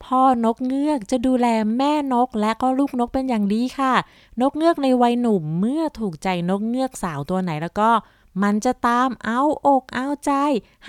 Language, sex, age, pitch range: Thai, female, 20-39, 190-260 Hz